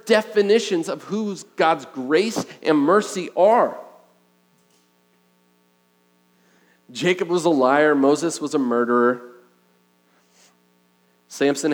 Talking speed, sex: 85 wpm, male